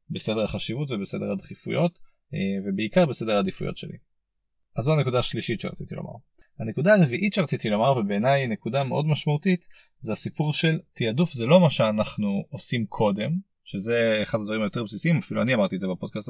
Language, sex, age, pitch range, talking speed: Hebrew, male, 30-49, 115-180 Hz, 160 wpm